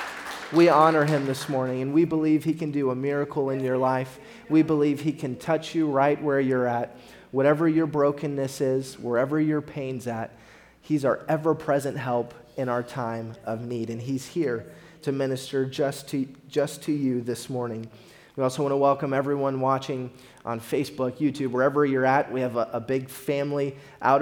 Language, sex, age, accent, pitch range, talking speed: English, male, 30-49, American, 125-145 Hz, 185 wpm